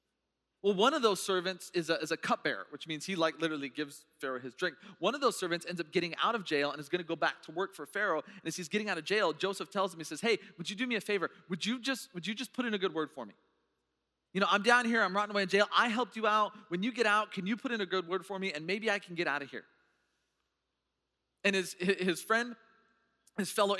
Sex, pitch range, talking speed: male, 145-200 Hz, 275 wpm